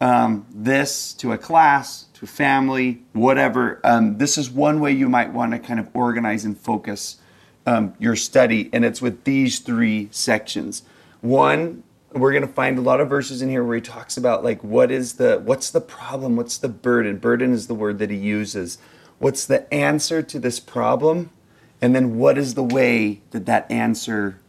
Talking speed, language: 190 wpm, English